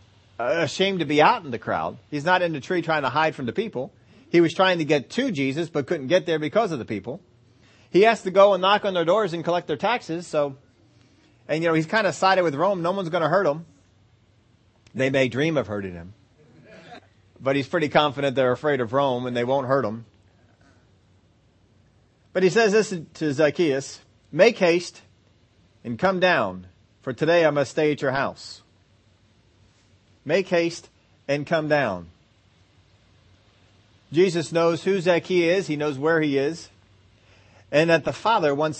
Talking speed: 185 wpm